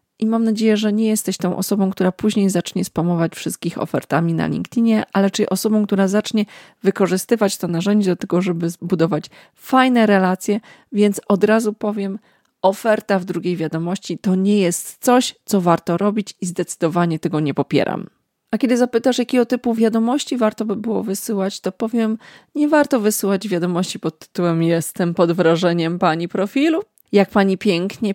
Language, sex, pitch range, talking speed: Polish, female, 180-225 Hz, 160 wpm